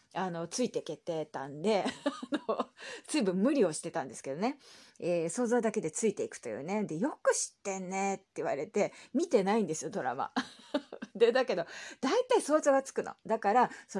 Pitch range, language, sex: 165-245 Hz, Japanese, female